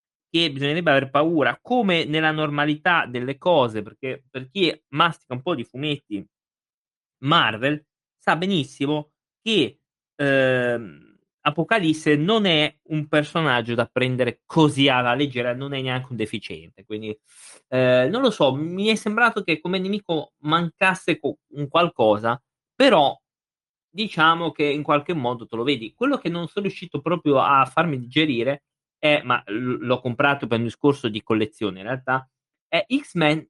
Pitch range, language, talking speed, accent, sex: 125-170 Hz, Italian, 145 wpm, native, male